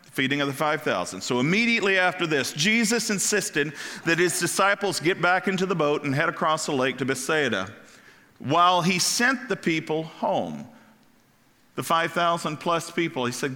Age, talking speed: 50-69, 160 wpm